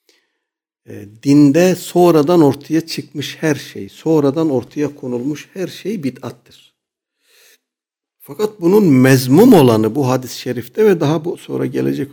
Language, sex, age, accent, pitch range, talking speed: Turkish, male, 60-79, native, 110-160 Hz, 120 wpm